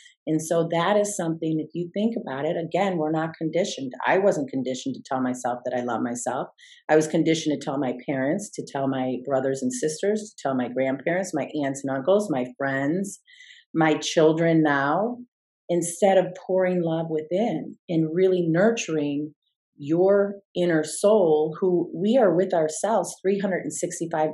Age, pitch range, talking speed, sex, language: 40-59, 140-180 Hz, 165 wpm, female, English